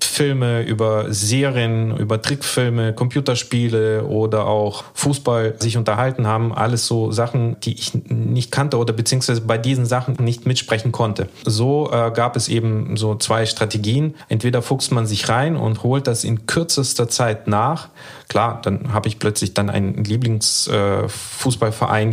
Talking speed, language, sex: 150 wpm, German, male